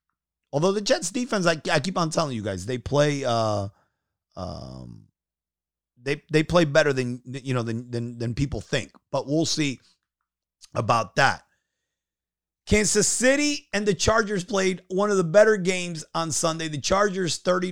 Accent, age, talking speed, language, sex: American, 30-49, 165 wpm, English, male